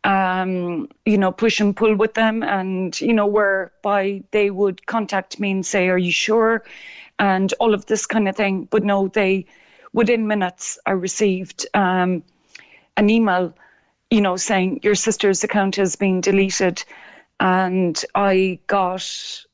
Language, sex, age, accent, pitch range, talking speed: English, female, 30-49, Irish, 190-215 Hz, 155 wpm